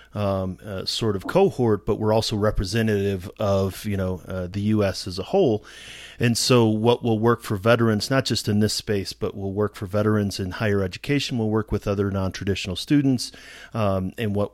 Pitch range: 95-110 Hz